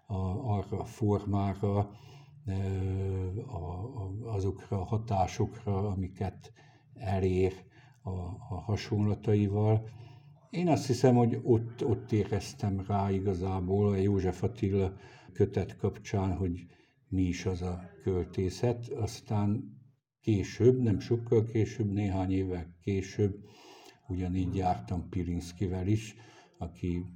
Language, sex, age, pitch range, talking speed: Hungarian, male, 60-79, 90-110 Hz, 100 wpm